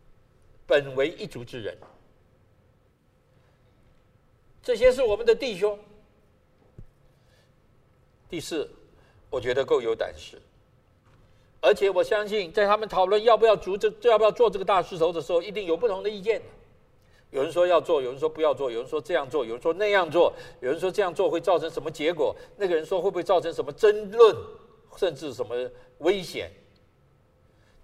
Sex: male